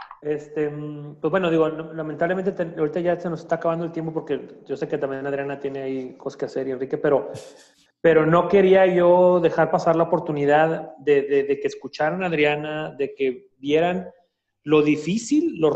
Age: 30-49